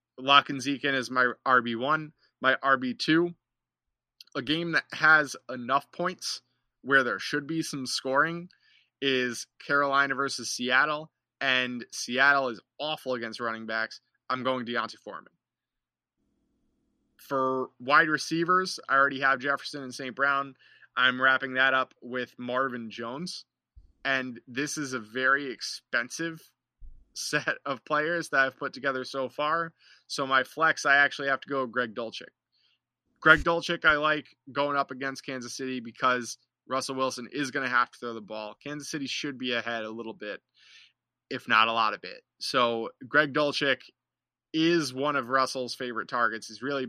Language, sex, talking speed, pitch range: English, male, 155 wpm, 120-145 Hz